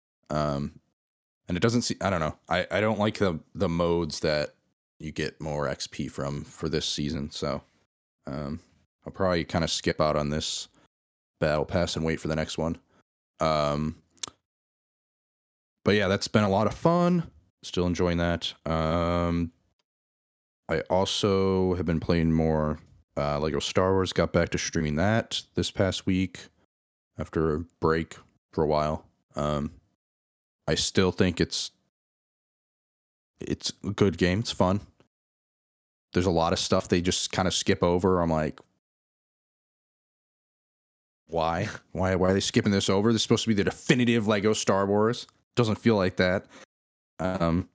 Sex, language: male, English